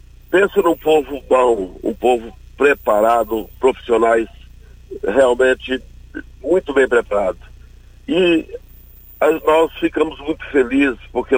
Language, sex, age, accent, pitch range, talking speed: Portuguese, male, 60-79, Brazilian, 110-145 Hz, 95 wpm